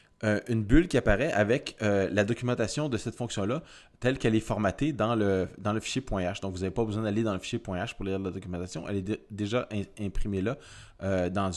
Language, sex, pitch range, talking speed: French, male, 100-125 Hz, 220 wpm